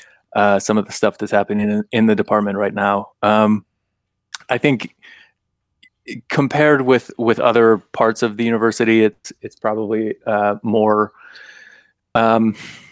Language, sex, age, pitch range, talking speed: English, male, 30-49, 105-115 Hz, 140 wpm